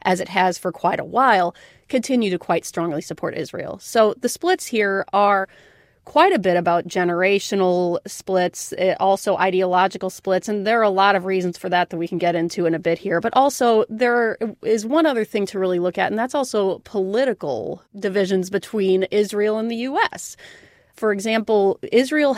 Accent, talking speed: American, 185 wpm